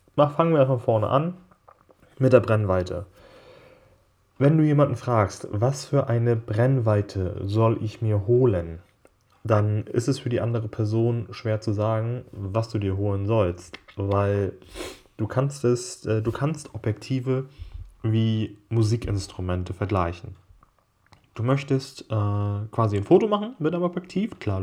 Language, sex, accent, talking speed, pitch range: German, male, German, 130 wpm, 100-125 Hz